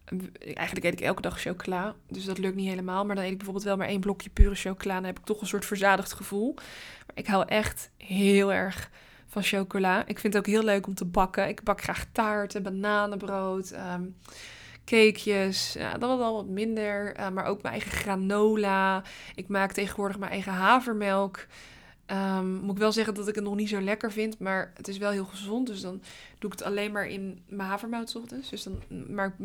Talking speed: 210 wpm